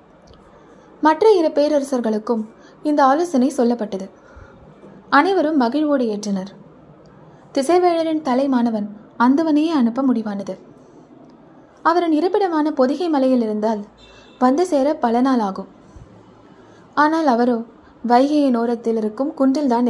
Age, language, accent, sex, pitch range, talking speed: 20-39, Tamil, native, female, 220-305 Hz, 85 wpm